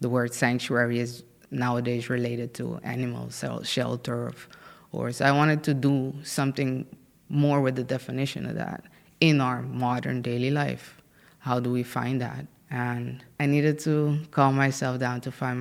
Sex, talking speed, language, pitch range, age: female, 165 wpm, Dutch, 125-145 Hz, 20-39